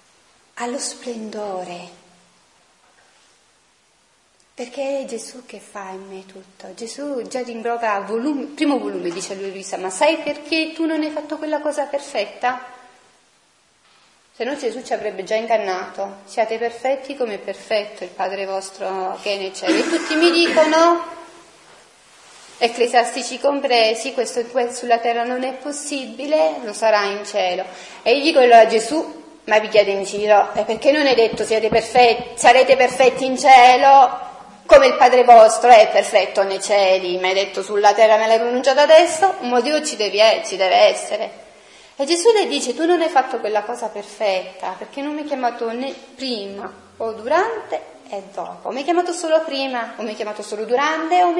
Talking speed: 165 wpm